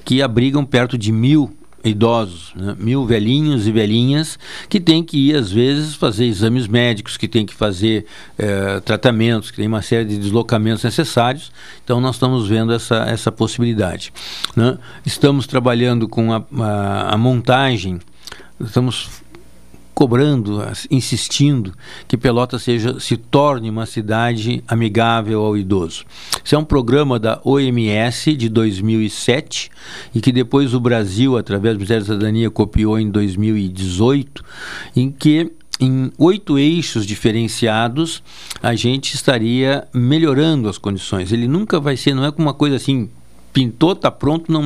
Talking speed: 145 wpm